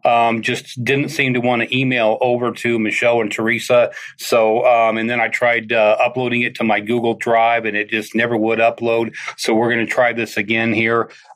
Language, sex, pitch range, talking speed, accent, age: English, male, 110-120 Hz, 210 wpm, American, 40-59